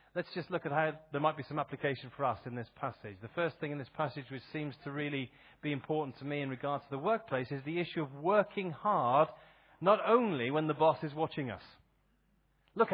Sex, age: male, 30-49